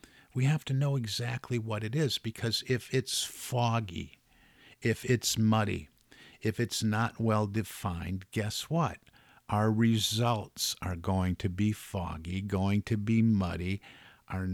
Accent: American